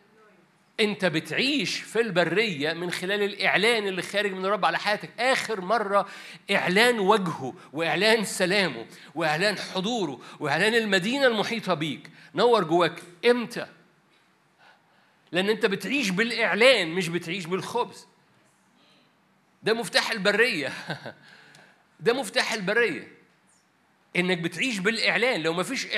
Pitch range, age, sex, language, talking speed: 170-220 Hz, 50-69, male, Arabic, 105 wpm